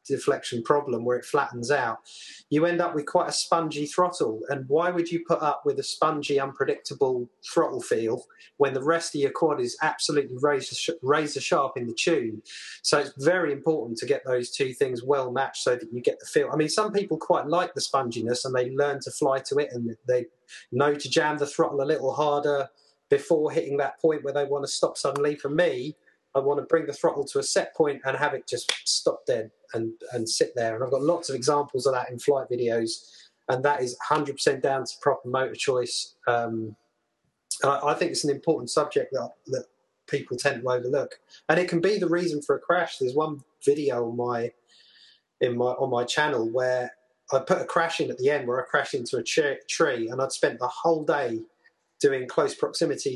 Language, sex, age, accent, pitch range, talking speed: English, male, 30-49, British, 130-175 Hz, 220 wpm